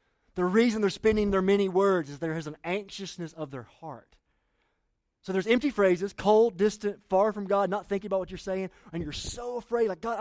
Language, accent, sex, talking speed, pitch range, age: English, American, male, 210 wpm, 145-205 Hz, 30-49